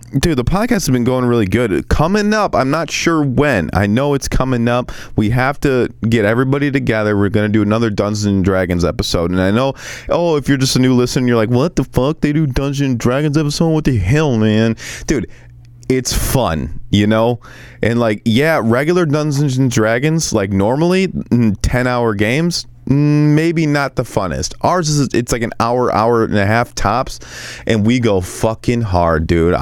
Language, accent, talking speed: English, American, 190 wpm